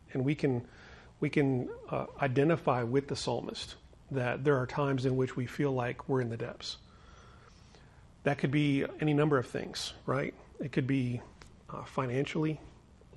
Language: English